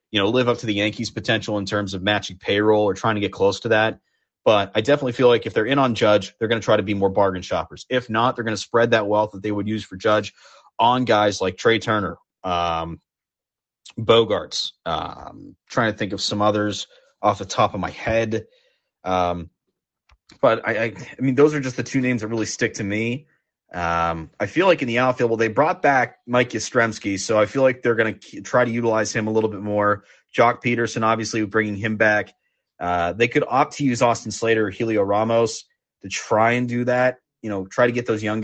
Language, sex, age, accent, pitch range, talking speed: English, male, 30-49, American, 105-120 Hz, 230 wpm